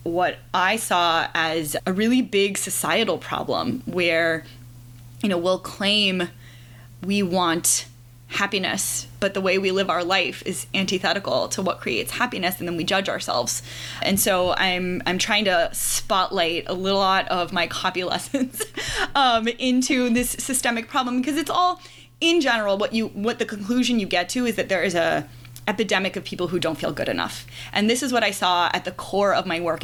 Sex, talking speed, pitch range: female, 185 wpm, 175-245 Hz